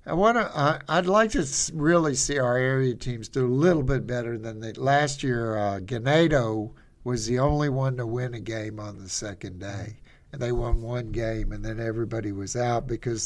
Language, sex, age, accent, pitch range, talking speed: English, male, 60-79, American, 110-140 Hz, 205 wpm